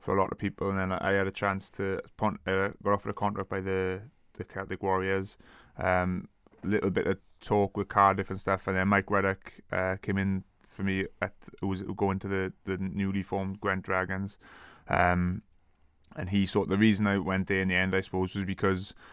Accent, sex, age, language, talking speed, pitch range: British, male, 20-39, English, 215 wpm, 95-100 Hz